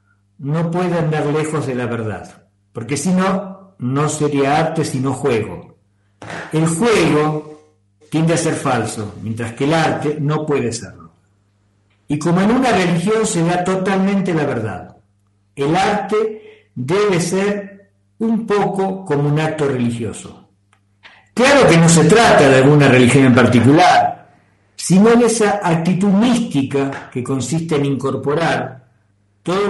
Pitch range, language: 120-185 Hz, Spanish